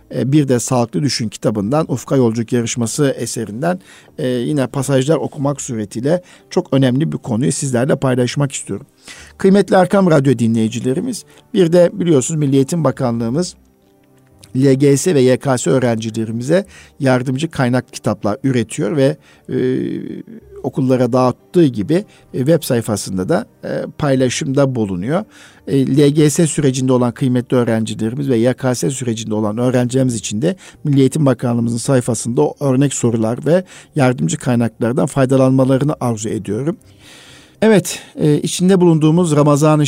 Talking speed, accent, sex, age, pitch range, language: 120 wpm, native, male, 50-69, 120-155 Hz, Turkish